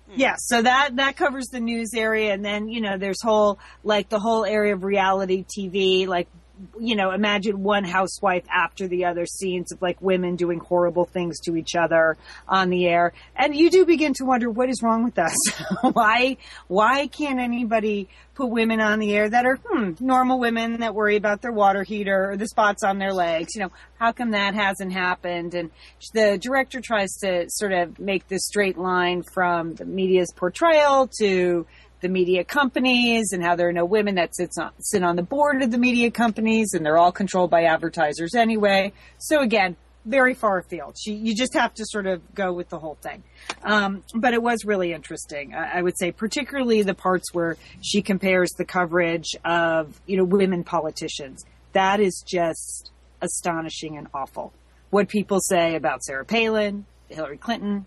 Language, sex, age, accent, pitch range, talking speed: English, female, 40-59, American, 175-225 Hz, 190 wpm